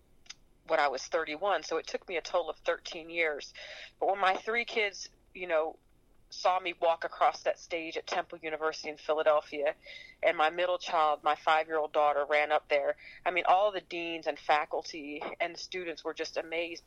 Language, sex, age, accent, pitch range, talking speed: English, female, 40-59, American, 150-170 Hz, 190 wpm